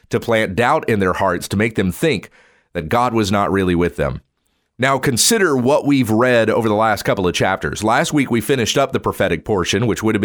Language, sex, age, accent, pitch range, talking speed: English, male, 40-59, American, 105-135 Hz, 230 wpm